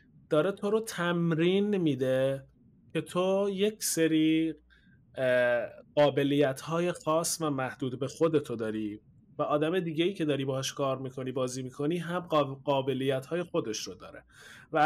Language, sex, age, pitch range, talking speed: Persian, male, 30-49, 140-180 Hz, 135 wpm